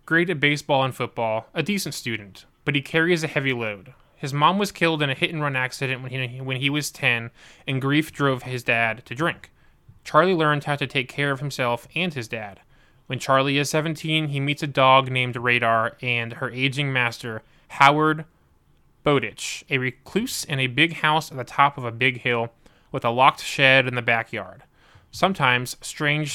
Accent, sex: American, male